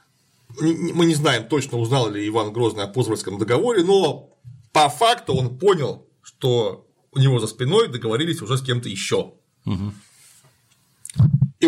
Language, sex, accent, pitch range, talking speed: Russian, male, native, 115-145 Hz, 140 wpm